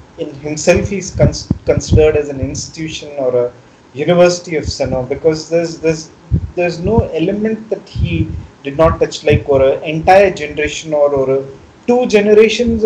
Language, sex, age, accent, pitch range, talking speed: Tamil, male, 30-49, native, 135-185 Hz, 155 wpm